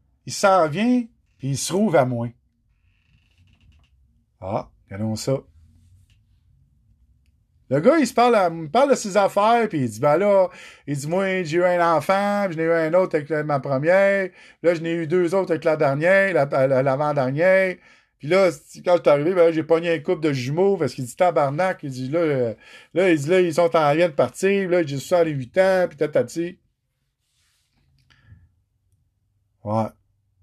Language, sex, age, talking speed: French, male, 50-69, 190 wpm